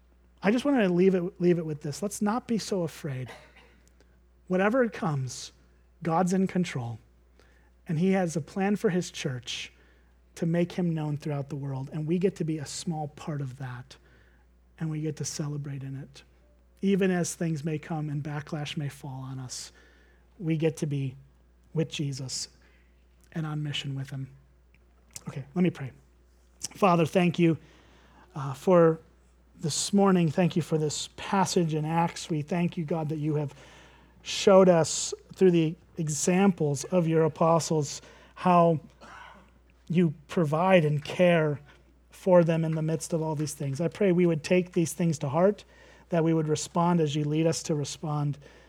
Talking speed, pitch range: 170 wpm, 130-170 Hz